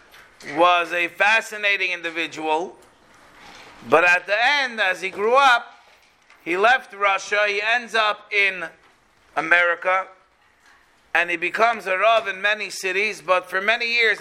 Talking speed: 135 wpm